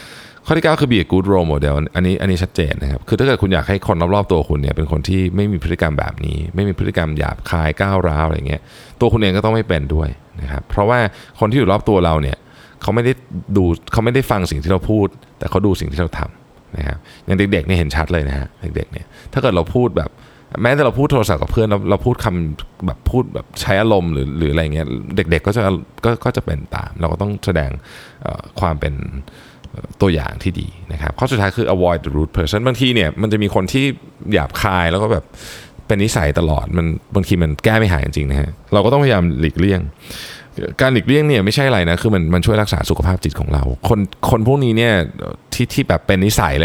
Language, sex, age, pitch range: Thai, male, 20-39, 80-110 Hz